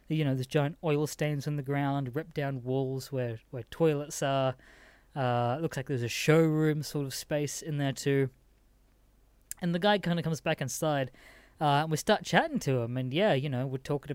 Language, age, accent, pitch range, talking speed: English, 20-39, Australian, 130-160 Hz, 210 wpm